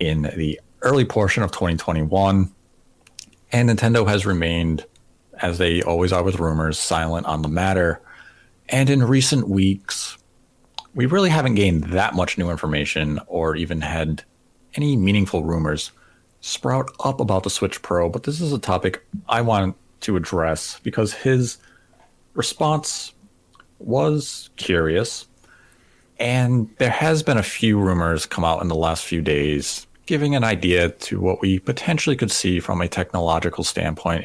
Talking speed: 150 wpm